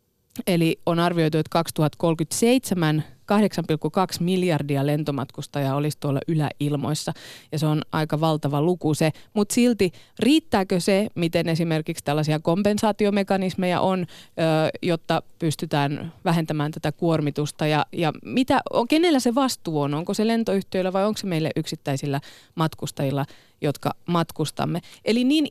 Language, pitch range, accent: Finnish, 150-190 Hz, native